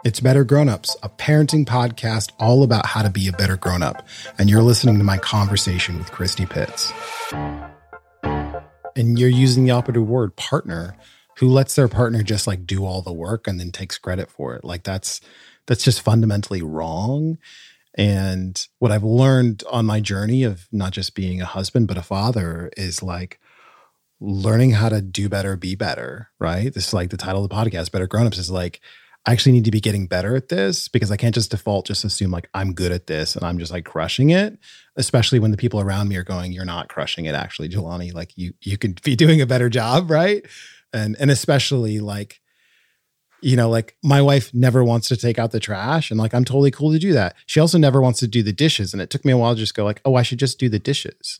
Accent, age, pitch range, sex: American, 30-49, 95-125 Hz, male